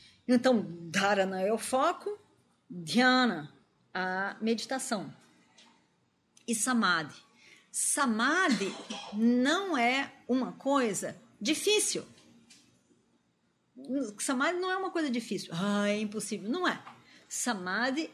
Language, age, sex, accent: Portuguese, 40-59, female, Brazilian